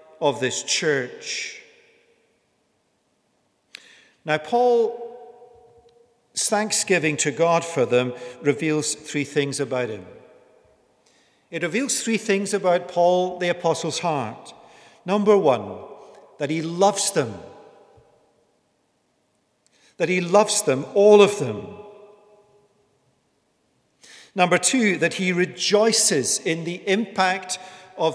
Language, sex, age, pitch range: English, male, 50-69, 160-220 Hz